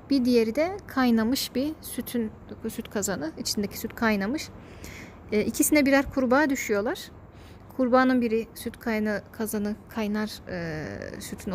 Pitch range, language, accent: 200-240 Hz, Turkish, native